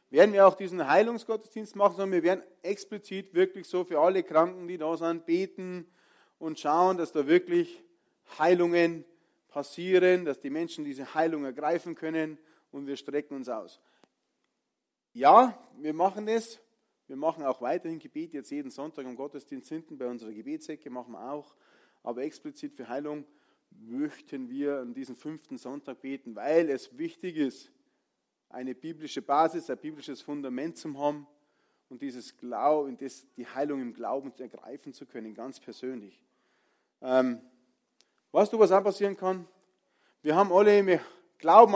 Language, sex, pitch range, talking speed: German, male, 145-200 Hz, 150 wpm